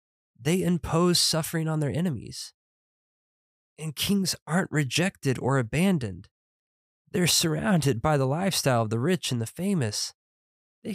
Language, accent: English, American